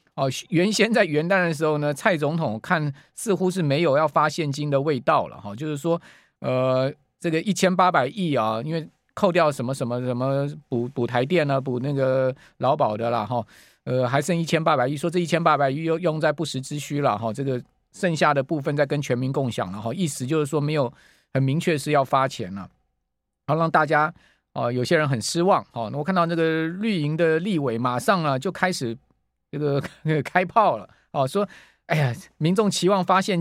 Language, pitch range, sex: Chinese, 135-180 Hz, male